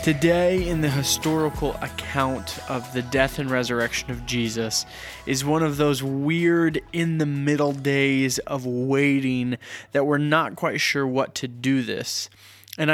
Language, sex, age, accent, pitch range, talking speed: English, male, 20-39, American, 130-165 Hz, 155 wpm